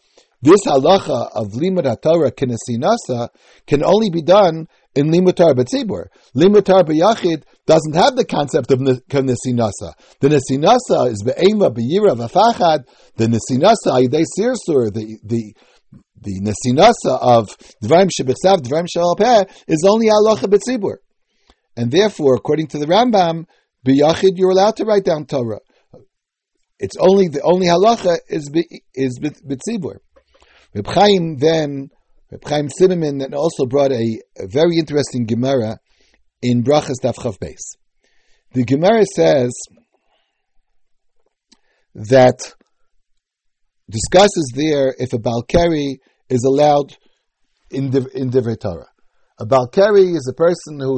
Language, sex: English, male